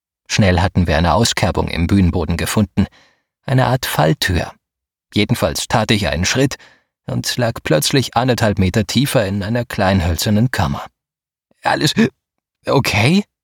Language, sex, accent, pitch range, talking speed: German, male, German, 95-130 Hz, 130 wpm